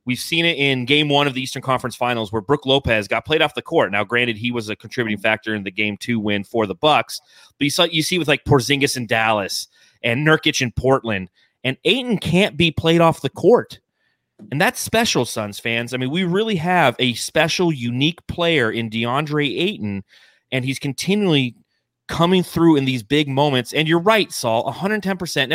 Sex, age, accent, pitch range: male, 30-49, American, 120-165 Hz